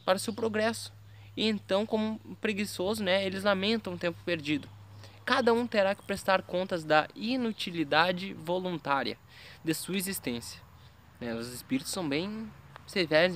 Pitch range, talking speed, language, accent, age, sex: 130-195 Hz, 140 wpm, Portuguese, Brazilian, 20-39, male